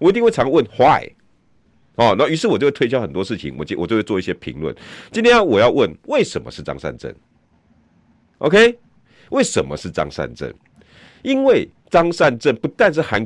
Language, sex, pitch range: Chinese, male, 85-140 Hz